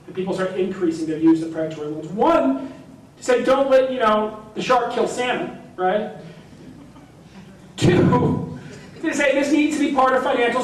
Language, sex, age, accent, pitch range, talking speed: English, male, 40-59, American, 220-295 Hz, 170 wpm